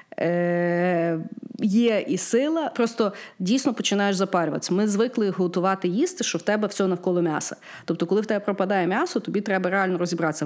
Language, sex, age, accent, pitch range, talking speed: Ukrainian, female, 30-49, native, 170-225 Hz, 160 wpm